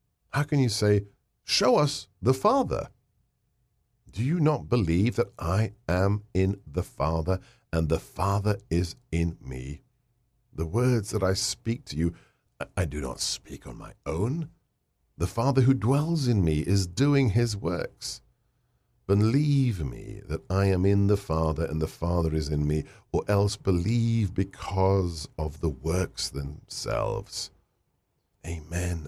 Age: 50-69